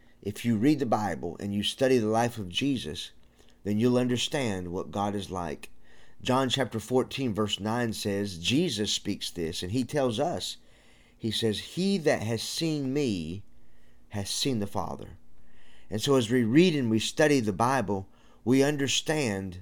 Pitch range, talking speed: 95-120 Hz, 170 wpm